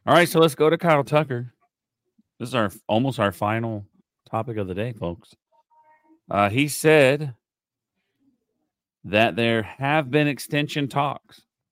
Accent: American